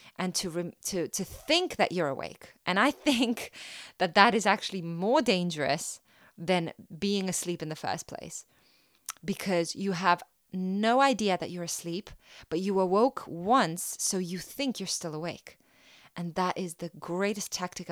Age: 20-39